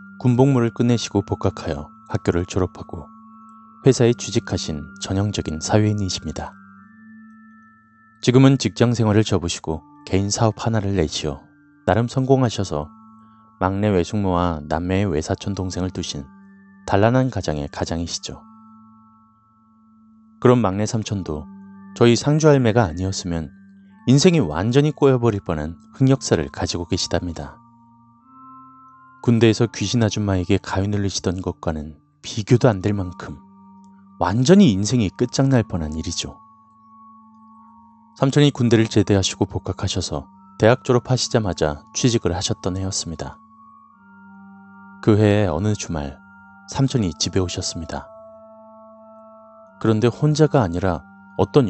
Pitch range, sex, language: 95-145 Hz, male, Korean